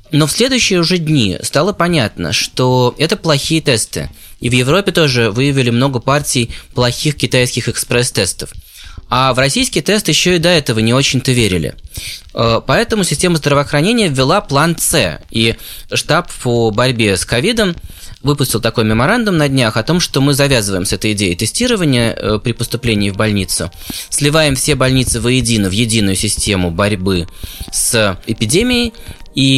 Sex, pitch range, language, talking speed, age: male, 110-150 Hz, Russian, 150 wpm, 20-39